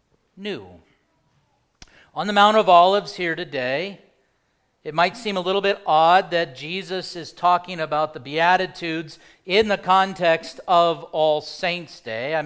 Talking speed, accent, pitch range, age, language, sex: 145 wpm, American, 155-210 Hz, 40-59, English, male